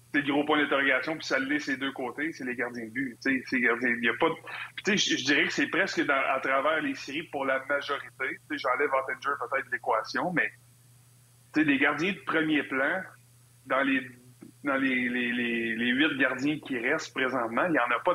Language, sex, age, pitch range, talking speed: French, male, 30-49, 120-150 Hz, 195 wpm